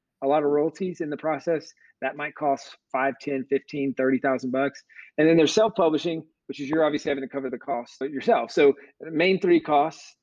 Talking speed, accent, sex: 200 wpm, American, male